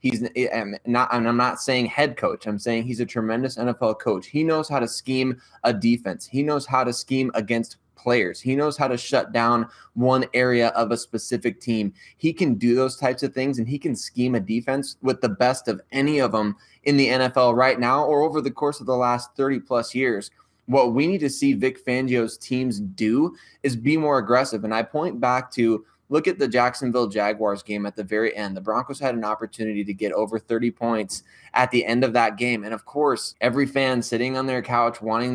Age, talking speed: 20-39, 220 wpm